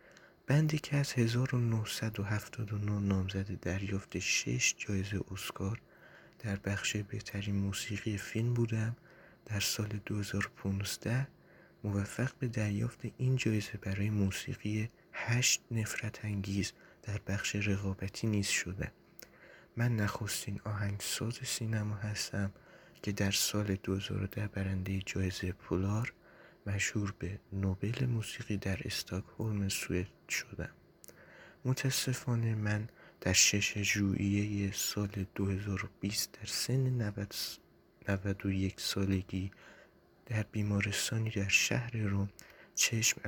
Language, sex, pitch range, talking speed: Persian, male, 100-115 Hz, 95 wpm